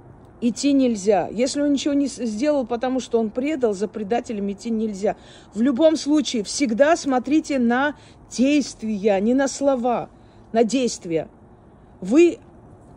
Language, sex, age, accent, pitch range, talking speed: Russian, female, 40-59, native, 215-275 Hz, 130 wpm